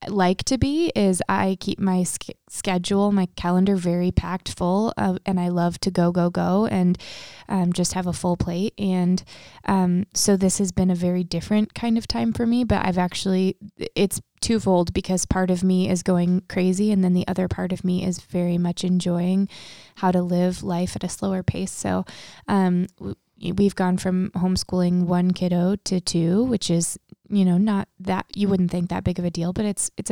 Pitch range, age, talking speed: 180-200 Hz, 20-39, 195 wpm